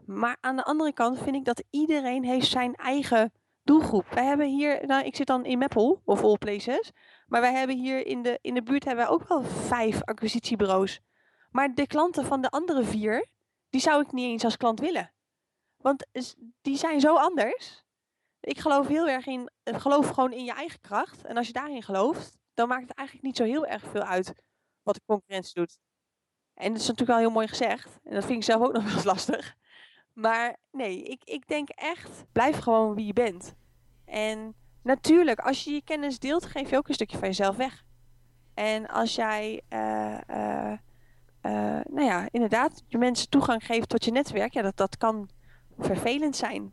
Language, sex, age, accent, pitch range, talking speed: Dutch, female, 20-39, Dutch, 205-270 Hz, 200 wpm